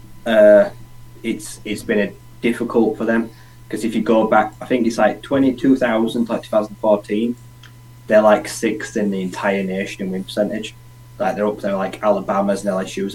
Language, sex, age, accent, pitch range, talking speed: English, male, 20-39, British, 105-125 Hz, 175 wpm